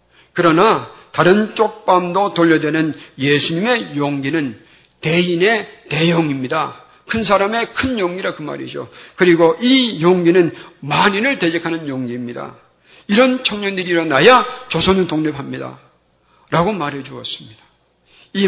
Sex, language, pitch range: male, Korean, 145-180 Hz